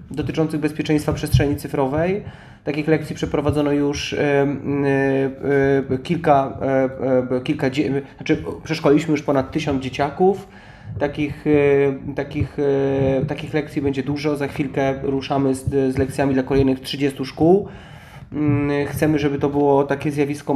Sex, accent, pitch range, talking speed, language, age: male, native, 140-155 Hz, 135 wpm, Polish, 30-49